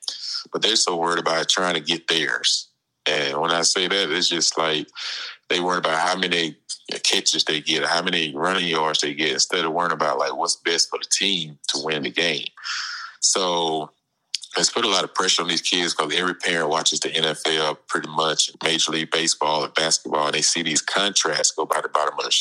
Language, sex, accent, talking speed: English, male, American, 210 wpm